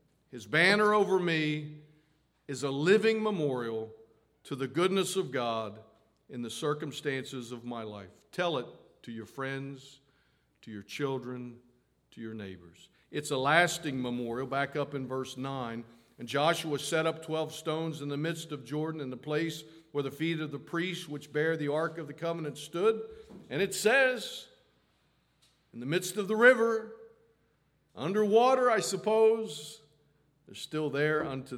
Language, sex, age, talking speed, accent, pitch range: English, male, 50-69, 160 wpm, American, 135-170 Hz